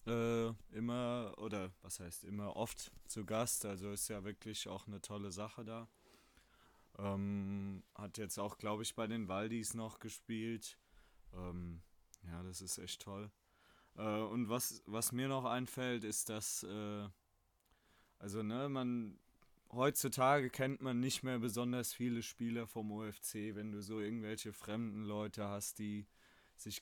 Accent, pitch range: German, 105-125 Hz